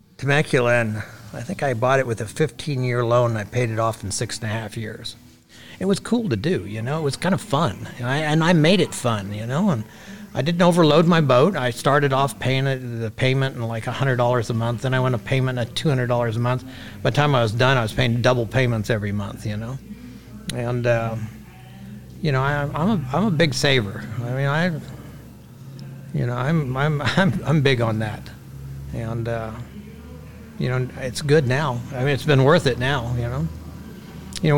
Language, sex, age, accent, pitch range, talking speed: English, male, 60-79, American, 115-140 Hz, 205 wpm